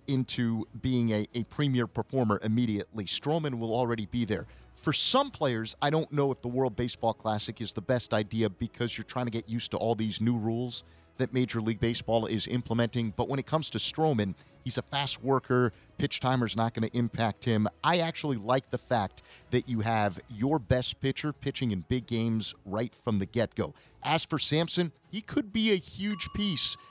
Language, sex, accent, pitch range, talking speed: English, male, American, 115-145 Hz, 200 wpm